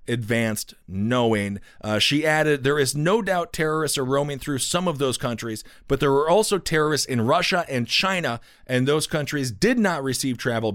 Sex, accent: male, American